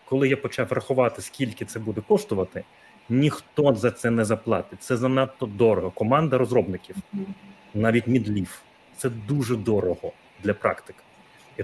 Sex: male